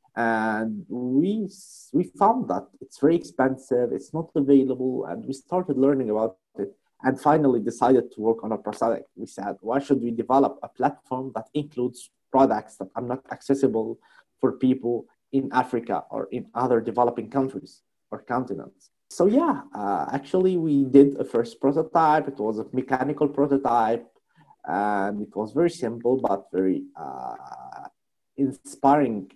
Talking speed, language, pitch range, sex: 150 wpm, English, 110-140 Hz, male